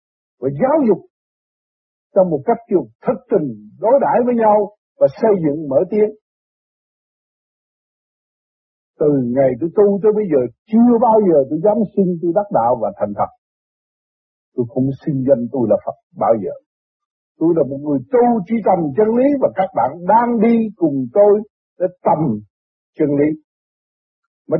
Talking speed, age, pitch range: 165 wpm, 60-79, 160-245 Hz